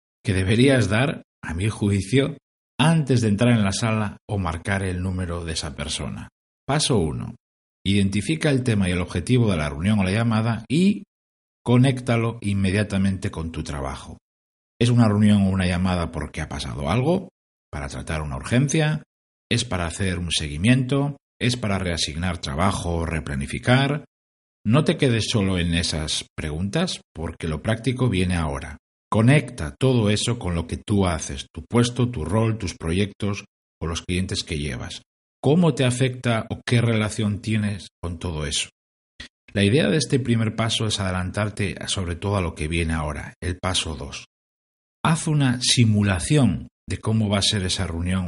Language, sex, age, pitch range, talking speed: Spanish, male, 60-79, 85-115 Hz, 165 wpm